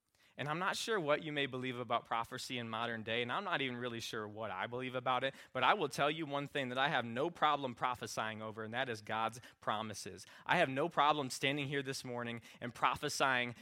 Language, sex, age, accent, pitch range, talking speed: English, male, 20-39, American, 115-140 Hz, 235 wpm